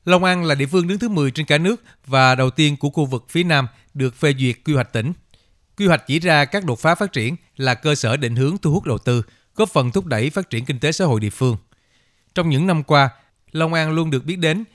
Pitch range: 120-155 Hz